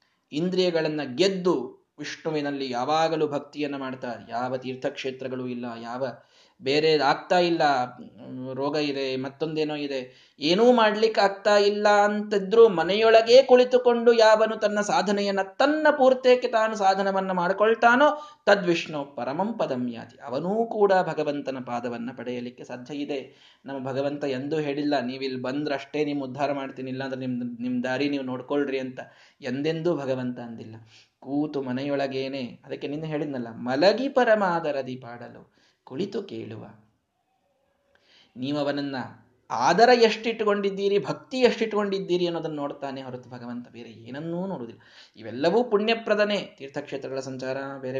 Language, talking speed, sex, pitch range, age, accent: Kannada, 110 wpm, male, 130-205 Hz, 20-39, native